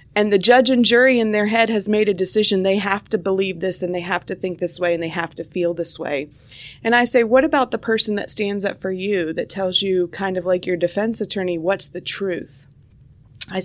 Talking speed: 245 wpm